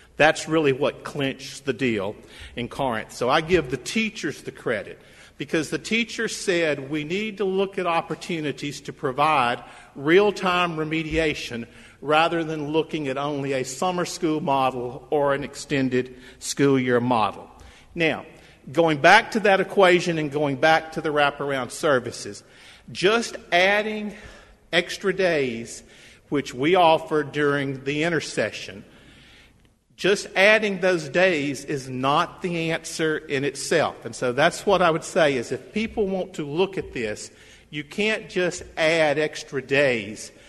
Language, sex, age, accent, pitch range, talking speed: English, male, 50-69, American, 135-175 Hz, 145 wpm